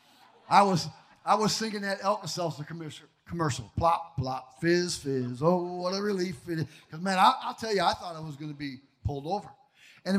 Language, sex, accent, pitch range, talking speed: English, male, American, 190-285 Hz, 195 wpm